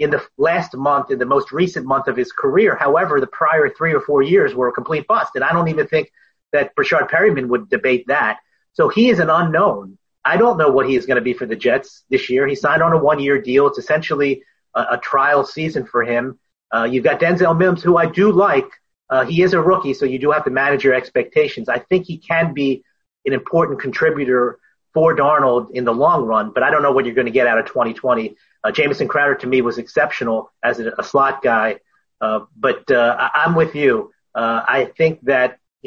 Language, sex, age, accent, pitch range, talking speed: English, male, 30-49, American, 125-170 Hz, 235 wpm